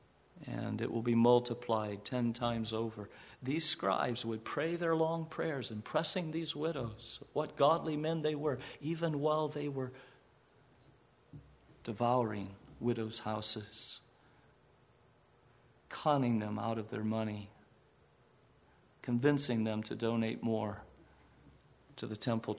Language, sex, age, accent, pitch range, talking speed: English, male, 50-69, American, 105-135 Hz, 115 wpm